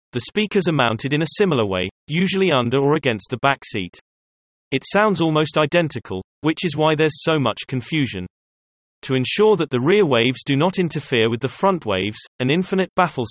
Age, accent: 30-49, British